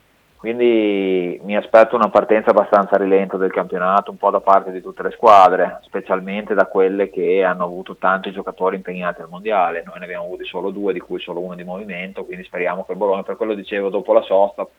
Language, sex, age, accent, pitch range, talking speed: Italian, male, 30-49, native, 90-100 Hz, 205 wpm